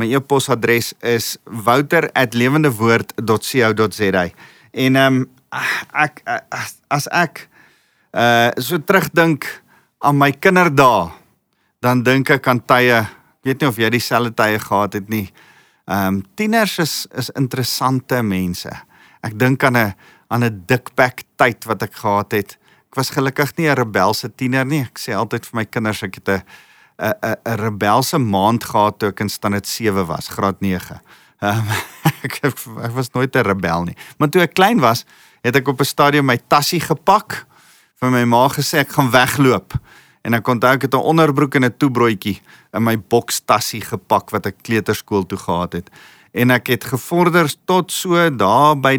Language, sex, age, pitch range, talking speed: English, male, 40-59, 110-140 Hz, 160 wpm